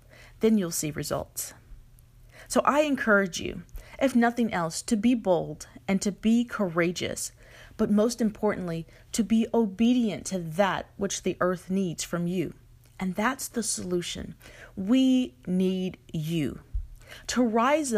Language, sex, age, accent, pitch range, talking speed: English, female, 30-49, American, 150-220 Hz, 135 wpm